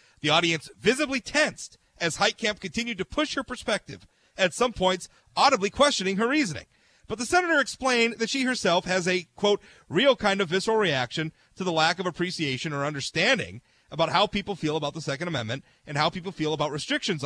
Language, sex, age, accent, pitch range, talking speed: English, male, 40-59, American, 140-220 Hz, 190 wpm